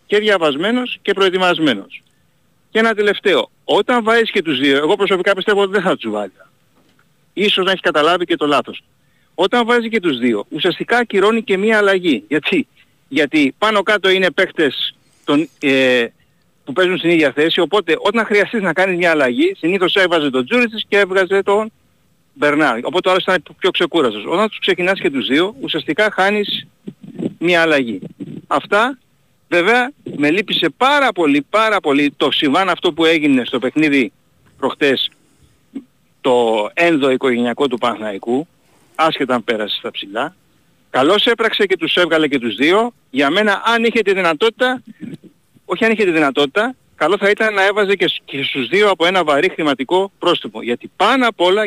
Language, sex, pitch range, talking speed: Greek, male, 150-215 Hz, 165 wpm